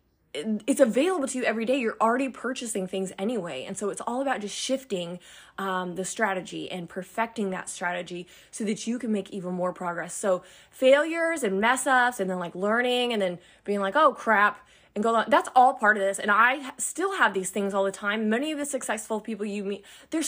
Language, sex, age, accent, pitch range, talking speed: English, female, 20-39, American, 195-255 Hz, 215 wpm